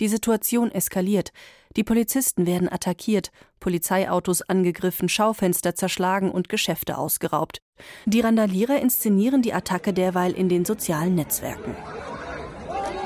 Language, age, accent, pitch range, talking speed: German, 40-59, German, 180-225 Hz, 110 wpm